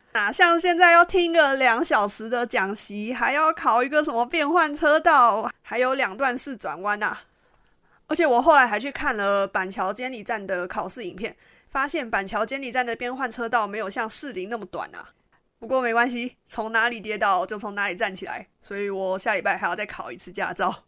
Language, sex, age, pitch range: Chinese, female, 30-49, 210-280 Hz